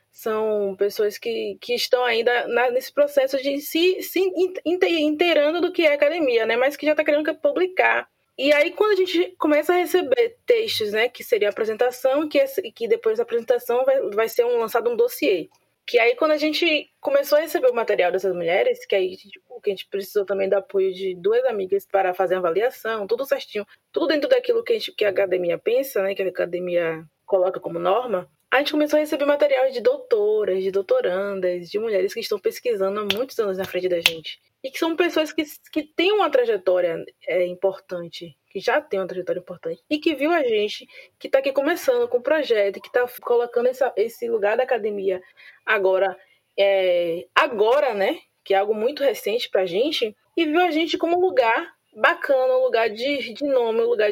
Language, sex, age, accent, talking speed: Portuguese, female, 20-39, Brazilian, 205 wpm